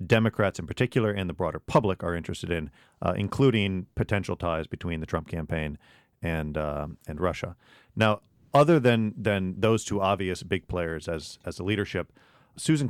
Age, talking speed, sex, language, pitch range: 40-59, 165 wpm, male, English, 90-110 Hz